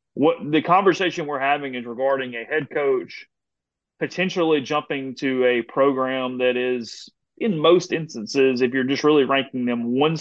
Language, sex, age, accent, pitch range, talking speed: English, male, 30-49, American, 130-160 Hz, 160 wpm